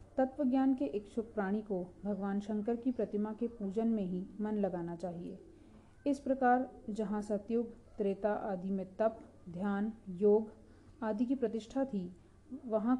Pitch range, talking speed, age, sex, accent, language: 195-230 Hz, 150 wpm, 40-59, female, native, Hindi